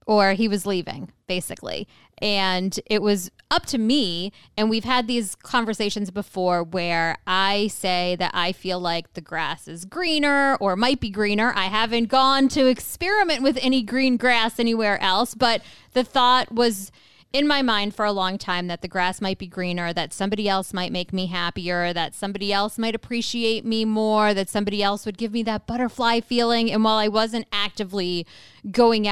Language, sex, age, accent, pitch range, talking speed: English, female, 20-39, American, 190-235 Hz, 185 wpm